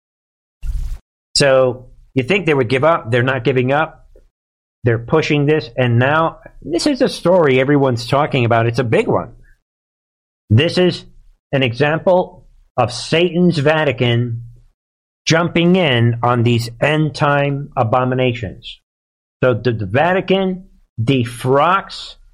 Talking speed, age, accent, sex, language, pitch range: 120 wpm, 50-69, American, male, English, 125-180 Hz